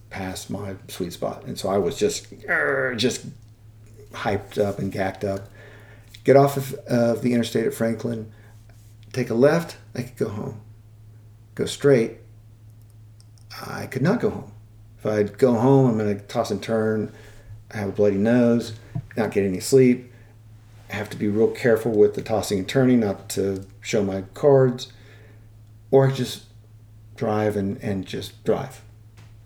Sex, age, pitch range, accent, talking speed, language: male, 50-69, 105-120 Hz, American, 160 wpm, English